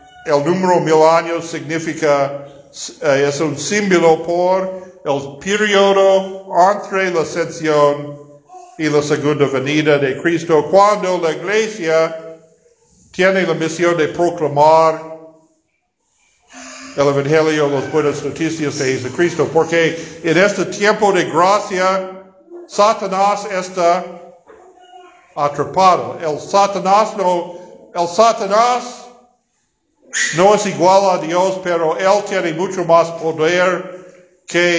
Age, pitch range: 50-69, 155-190 Hz